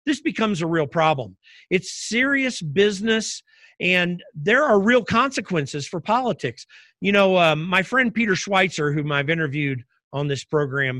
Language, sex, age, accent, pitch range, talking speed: English, male, 50-69, American, 150-210 Hz, 145 wpm